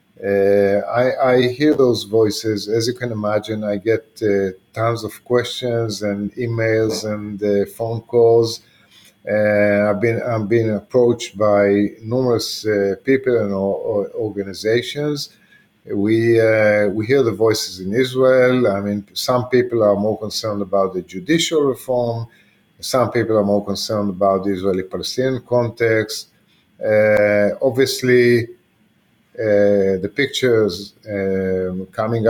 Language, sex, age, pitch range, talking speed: English, male, 50-69, 100-120 Hz, 130 wpm